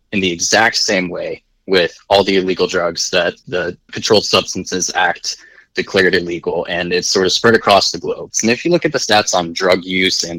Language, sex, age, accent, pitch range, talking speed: English, male, 20-39, American, 95-120 Hz, 210 wpm